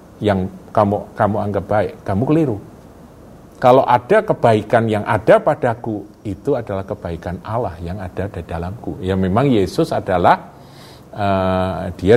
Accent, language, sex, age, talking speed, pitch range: native, Indonesian, male, 50-69, 135 wpm, 90-140 Hz